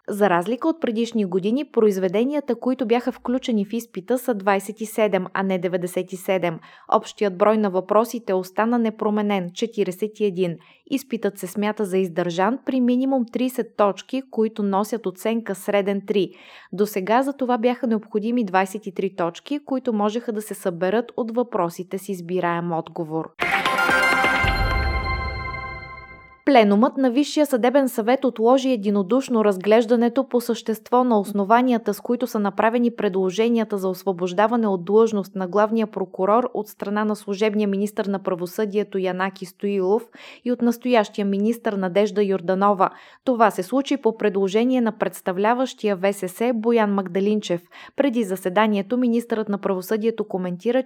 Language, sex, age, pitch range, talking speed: Bulgarian, female, 20-39, 195-235 Hz, 130 wpm